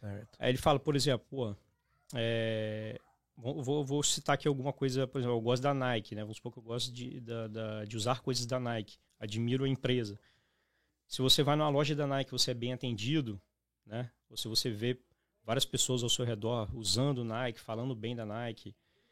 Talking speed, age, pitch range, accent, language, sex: 200 wpm, 20-39, 115-145 Hz, Brazilian, Portuguese, male